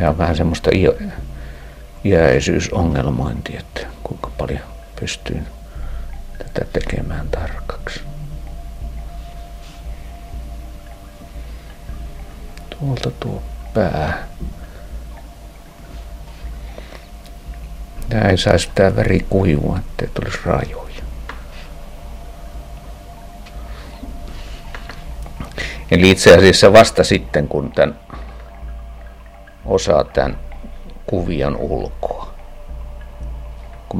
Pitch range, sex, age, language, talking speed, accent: 65-85 Hz, male, 60-79, Finnish, 65 wpm, native